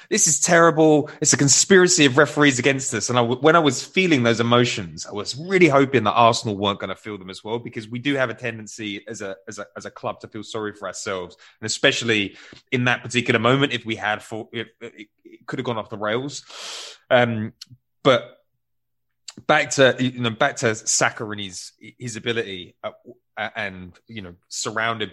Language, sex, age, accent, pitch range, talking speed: English, male, 20-39, British, 105-130 Hz, 205 wpm